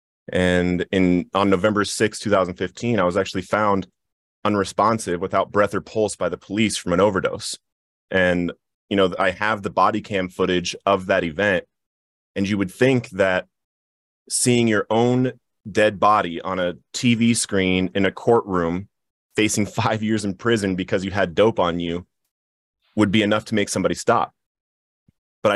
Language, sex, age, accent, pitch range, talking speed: English, male, 30-49, American, 95-110 Hz, 160 wpm